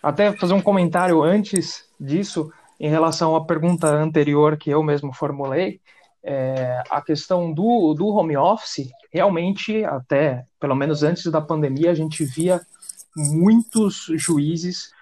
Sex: male